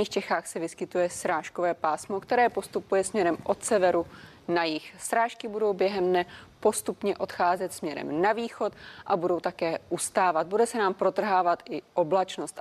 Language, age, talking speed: Czech, 20-39, 150 wpm